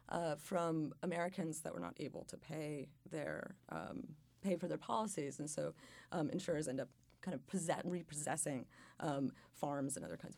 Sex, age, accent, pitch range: female, 30-49, American, 150-195 Hz